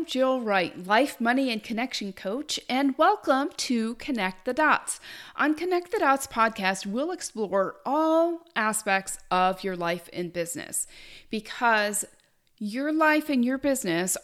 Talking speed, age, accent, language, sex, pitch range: 140 wpm, 40-59, American, English, female, 195-275 Hz